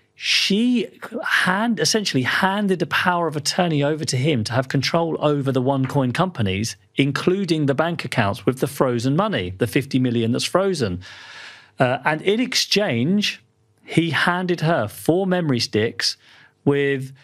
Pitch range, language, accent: 115-145 Hz, English, British